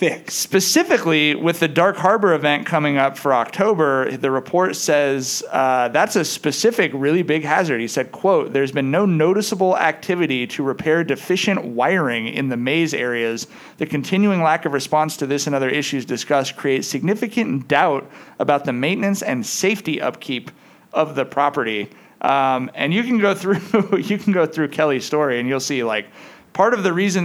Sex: male